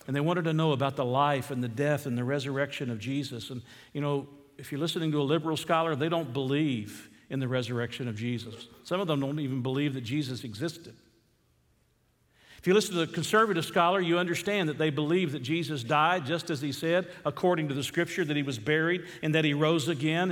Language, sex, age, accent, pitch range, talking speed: English, male, 50-69, American, 145-185 Hz, 220 wpm